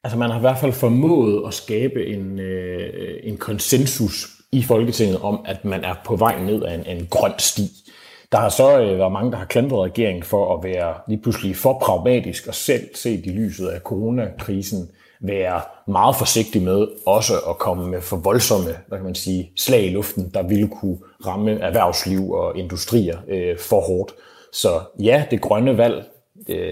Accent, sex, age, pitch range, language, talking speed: native, male, 30-49, 95-115 Hz, Danish, 185 wpm